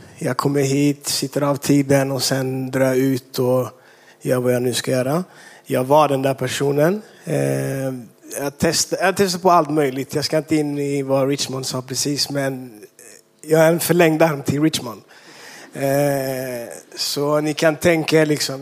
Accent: native